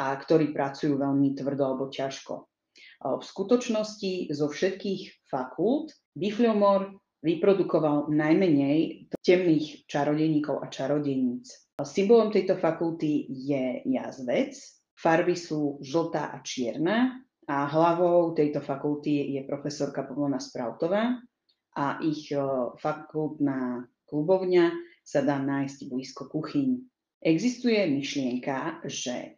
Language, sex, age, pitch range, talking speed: Slovak, female, 30-49, 145-200 Hz, 100 wpm